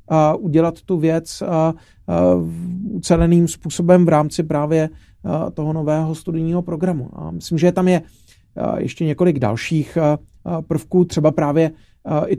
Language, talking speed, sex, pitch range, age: Czech, 140 wpm, male, 145-170 Hz, 40-59